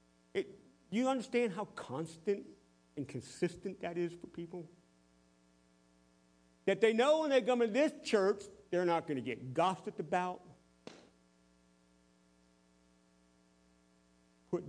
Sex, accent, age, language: male, American, 50-69, English